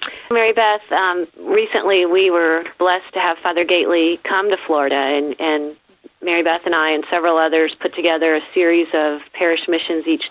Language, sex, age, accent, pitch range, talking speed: English, female, 40-59, American, 165-210 Hz, 180 wpm